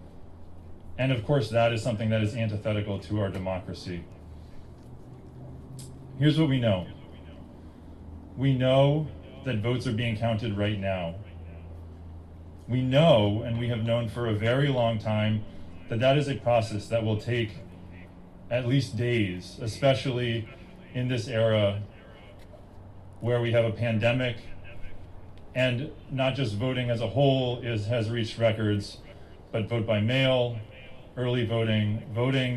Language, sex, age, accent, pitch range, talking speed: English, male, 30-49, American, 100-125 Hz, 135 wpm